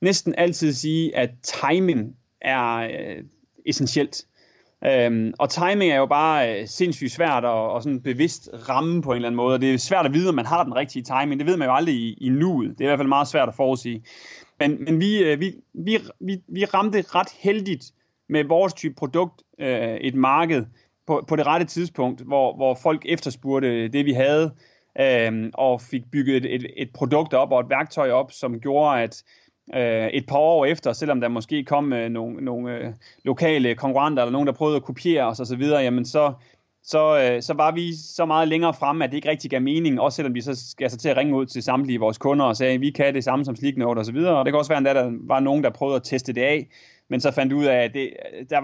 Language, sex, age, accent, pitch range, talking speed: Danish, male, 30-49, native, 125-155 Hz, 220 wpm